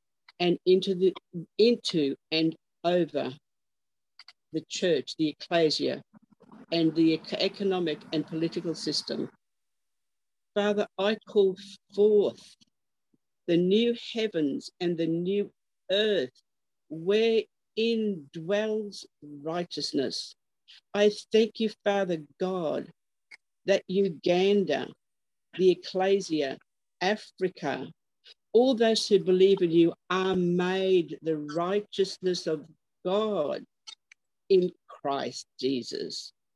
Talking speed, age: 90 wpm, 50-69